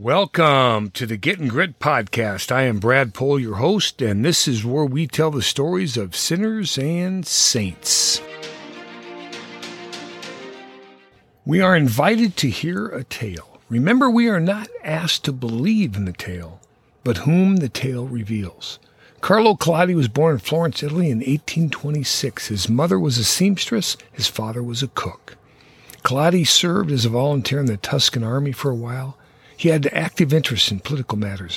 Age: 50-69